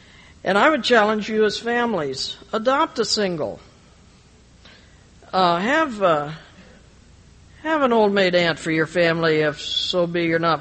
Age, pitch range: 60-79, 160-220 Hz